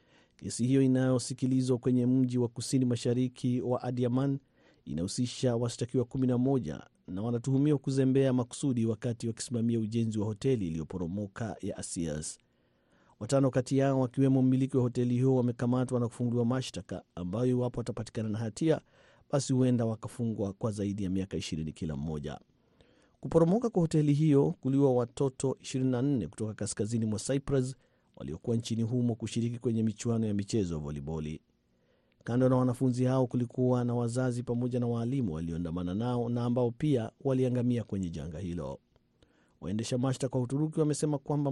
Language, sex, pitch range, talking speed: Swahili, male, 110-130 Hz, 140 wpm